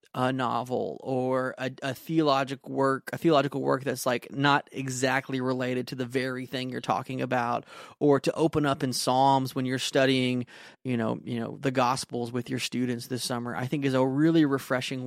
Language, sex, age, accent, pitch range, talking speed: English, male, 30-49, American, 130-145 Hz, 190 wpm